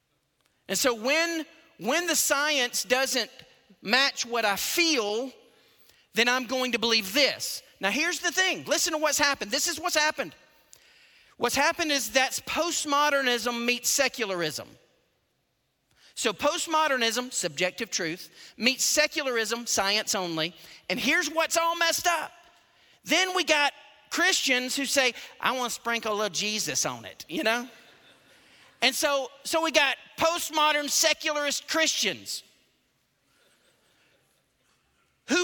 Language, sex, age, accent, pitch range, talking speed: English, male, 40-59, American, 250-335 Hz, 130 wpm